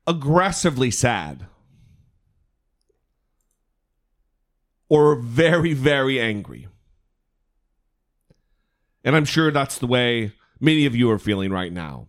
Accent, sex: American, male